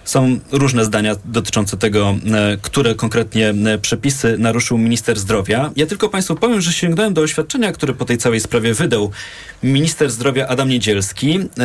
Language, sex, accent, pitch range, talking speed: Polish, male, native, 110-140 Hz, 150 wpm